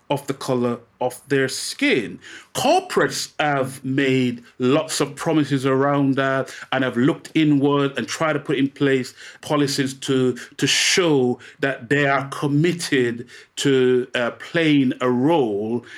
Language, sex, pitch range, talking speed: English, male, 125-155 Hz, 140 wpm